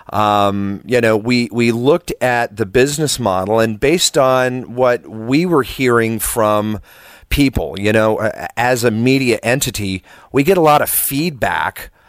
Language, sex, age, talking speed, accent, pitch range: English, male, 40-59, 155 wpm, American, 100-125 Hz